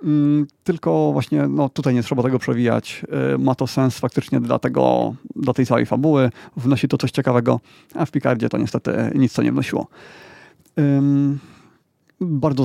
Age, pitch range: 30-49, 125-145 Hz